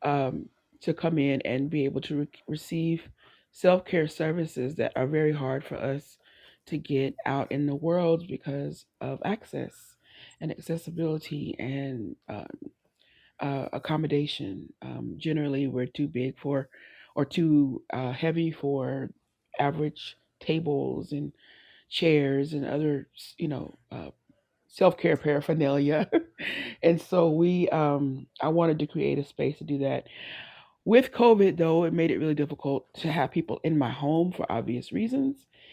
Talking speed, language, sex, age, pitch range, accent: 145 wpm, English, female, 30-49, 135-165 Hz, American